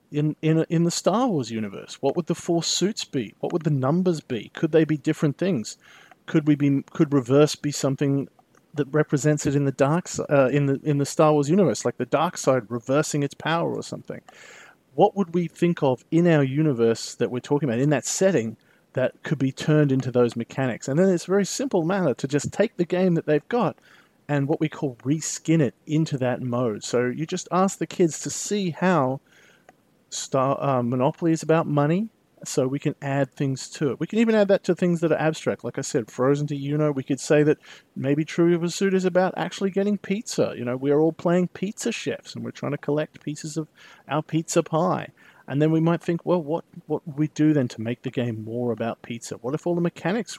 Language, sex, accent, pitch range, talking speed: English, male, Australian, 140-175 Hz, 230 wpm